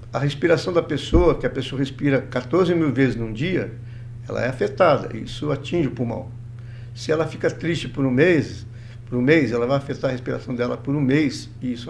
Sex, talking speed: male, 205 wpm